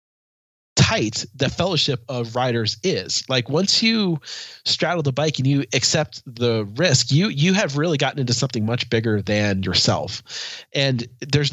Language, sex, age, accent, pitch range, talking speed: English, male, 20-39, American, 115-150 Hz, 155 wpm